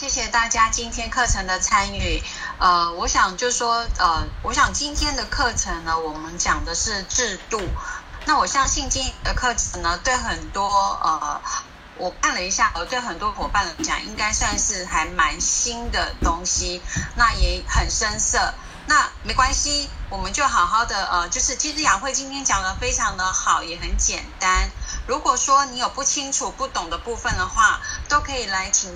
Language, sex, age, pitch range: Chinese, female, 30-49, 185-270 Hz